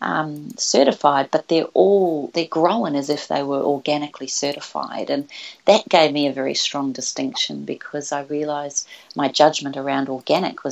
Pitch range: 140-160 Hz